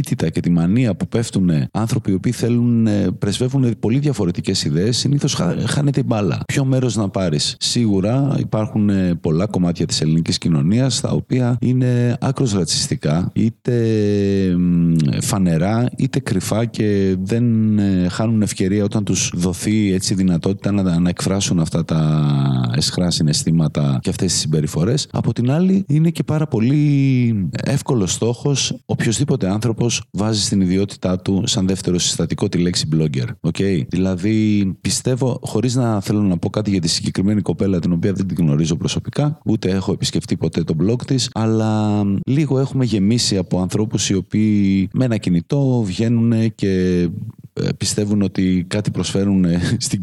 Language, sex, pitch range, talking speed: Greek, male, 95-125 Hz, 145 wpm